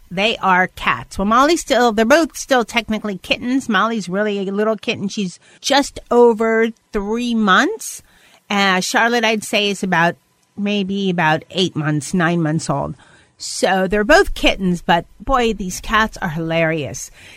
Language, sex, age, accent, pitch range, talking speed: English, female, 40-59, American, 170-220 Hz, 150 wpm